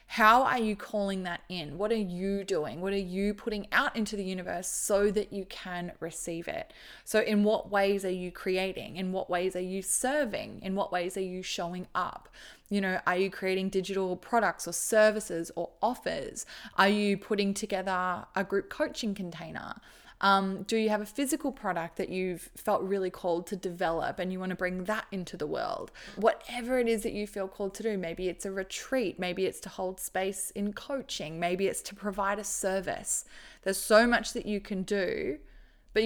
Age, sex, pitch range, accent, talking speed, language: 20-39, female, 185-220 Hz, Australian, 200 wpm, English